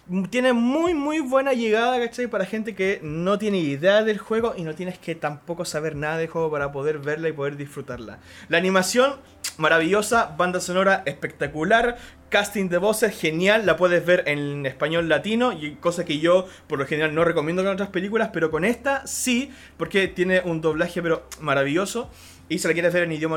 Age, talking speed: 20-39, 185 wpm